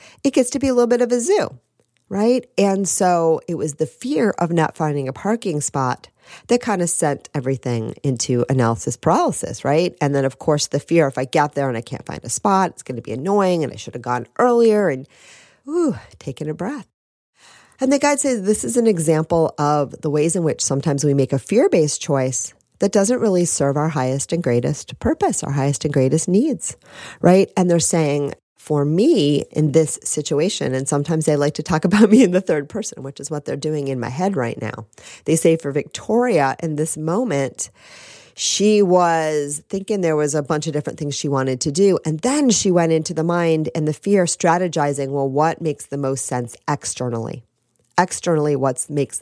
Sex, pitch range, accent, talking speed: female, 140-185 Hz, American, 205 wpm